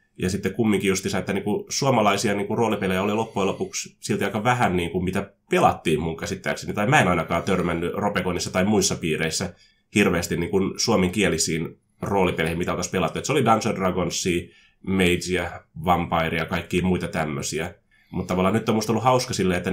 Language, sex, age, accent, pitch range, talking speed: Finnish, male, 20-39, native, 90-110 Hz, 170 wpm